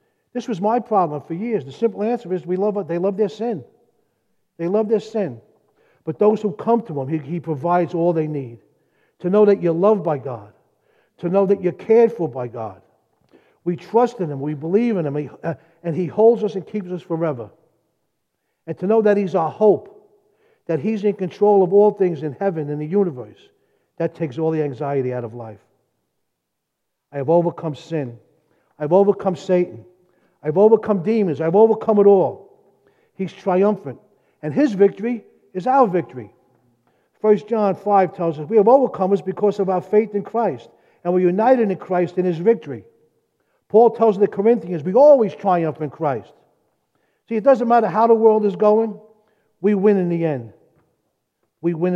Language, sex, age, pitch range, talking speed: English, male, 50-69, 160-215 Hz, 185 wpm